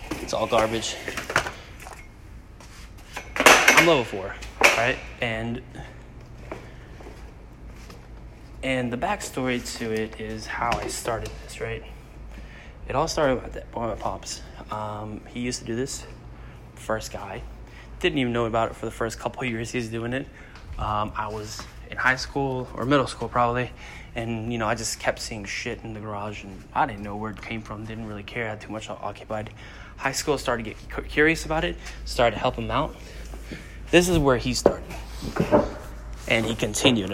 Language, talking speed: English, 175 wpm